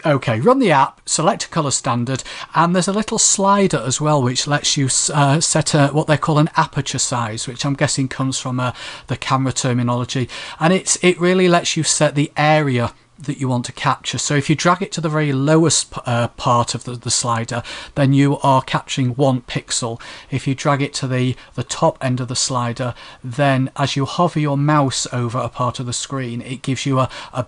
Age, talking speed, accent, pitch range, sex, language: 40-59, 215 wpm, British, 125-150 Hz, male, English